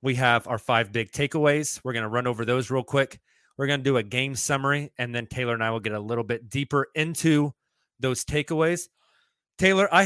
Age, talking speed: 30-49, 220 wpm